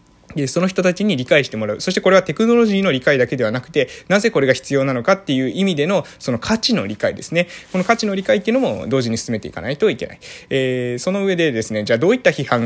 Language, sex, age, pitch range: Japanese, male, 20-39, 115-180 Hz